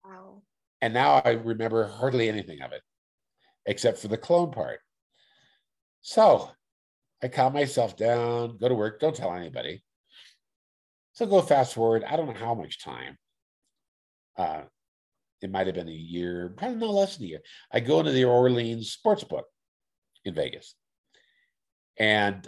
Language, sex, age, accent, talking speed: English, male, 50-69, American, 150 wpm